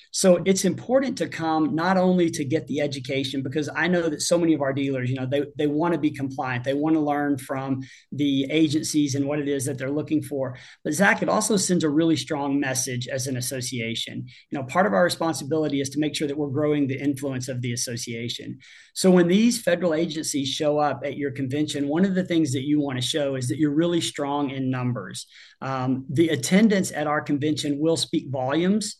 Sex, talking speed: male, 225 wpm